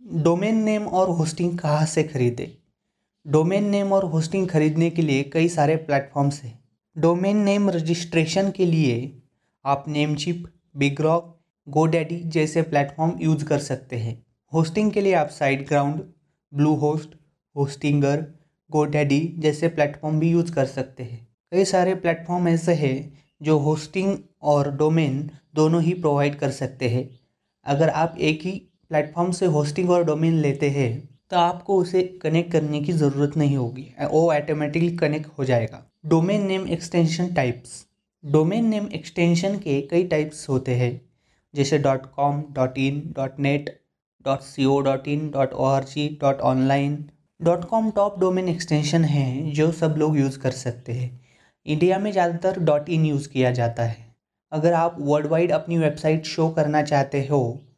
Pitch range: 140-170 Hz